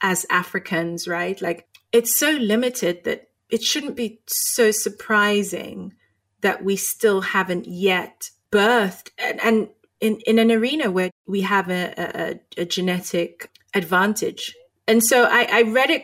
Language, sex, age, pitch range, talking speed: English, female, 30-49, 190-245 Hz, 140 wpm